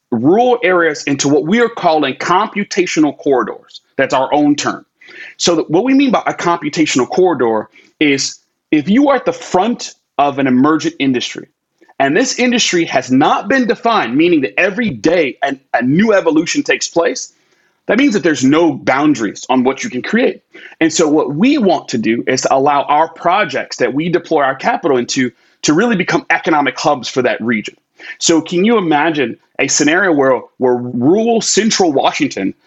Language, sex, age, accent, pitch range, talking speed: English, male, 30-49, American, 145-240 Hz, 175 wpm